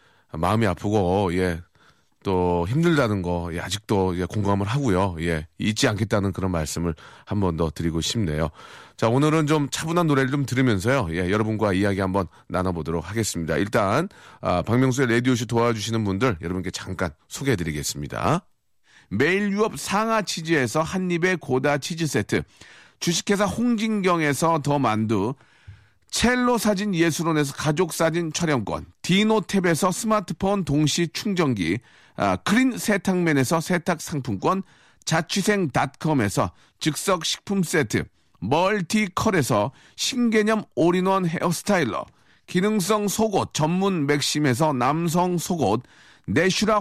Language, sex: Korean, male